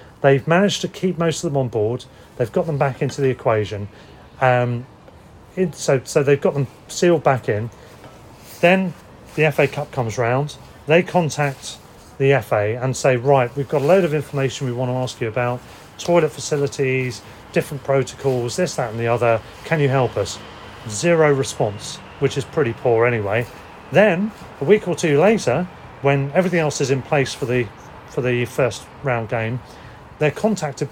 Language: English